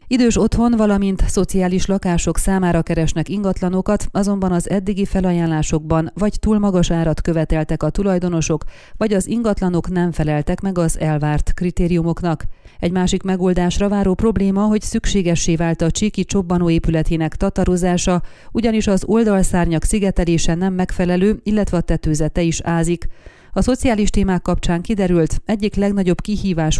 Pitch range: 165-195 Hz